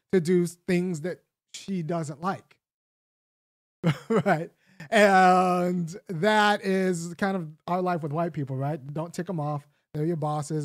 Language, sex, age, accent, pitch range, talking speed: English, male, 30-49, American, 165-205 Hz, 145 wpm